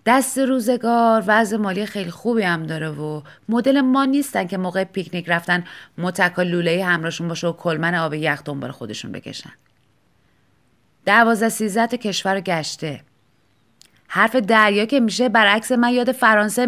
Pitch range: 170-230 Hz